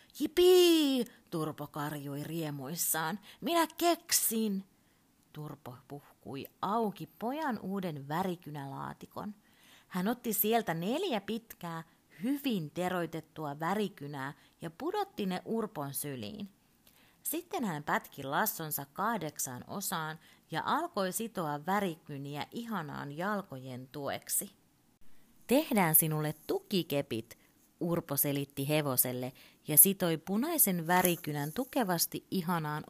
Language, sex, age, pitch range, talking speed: Finnish, female, 30-49, 145-210 Hz, 90 wpm